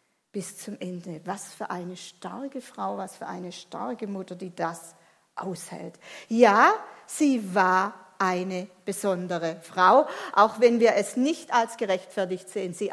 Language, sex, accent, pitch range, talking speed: German, female, German, 185-235 Hz, 145 wpm